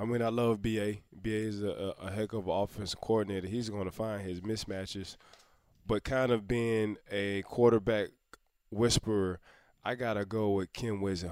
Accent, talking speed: American, 180 wpm